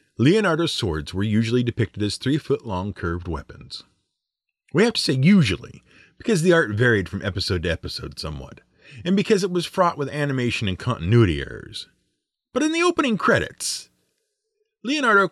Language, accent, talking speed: English, American, 155 wpm